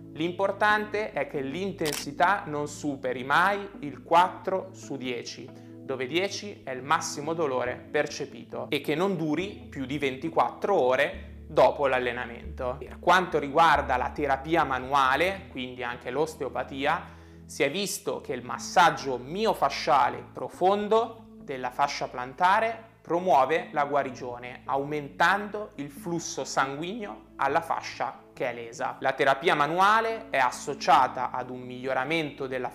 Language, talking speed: Italian, 125 wpm